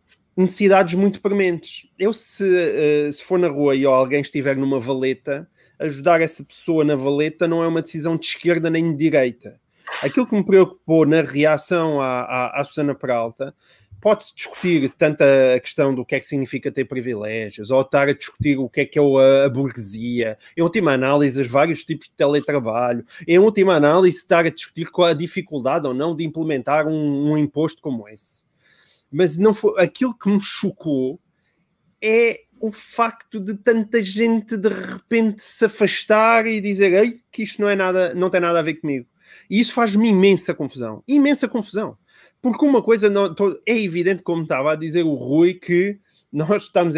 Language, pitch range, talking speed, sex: Portuguese, 140-195 Hz, 180 wpm, male